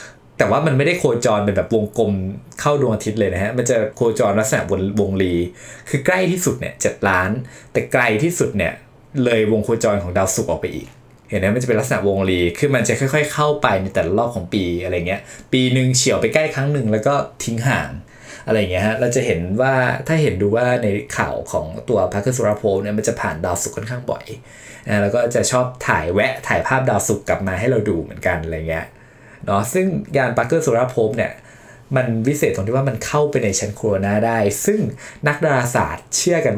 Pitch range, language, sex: 100-140 Hz, Thai, male